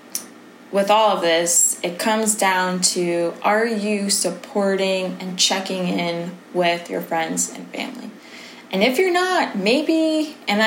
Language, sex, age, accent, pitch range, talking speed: English, female, 20-39, American, 180-245 Hz, 140 wpm